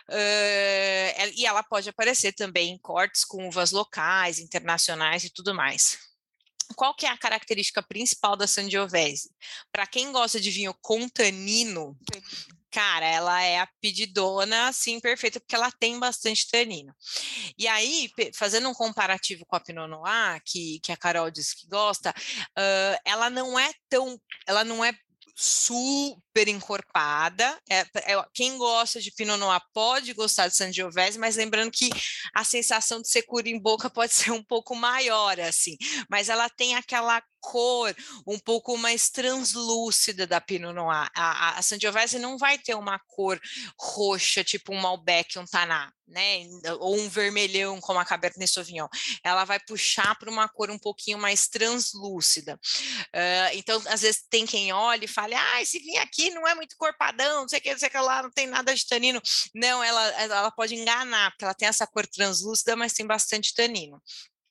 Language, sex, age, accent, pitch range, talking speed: Portuguese, female, 20-39, Brazilian, 190-235 Hz, 170 wpm